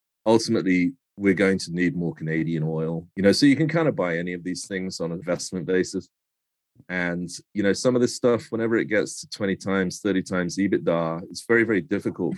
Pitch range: 80-95 Hz